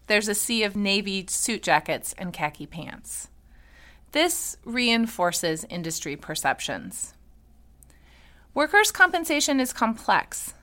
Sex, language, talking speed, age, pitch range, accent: female, English, 100 wpm, 30-49, 160-240 Hz, American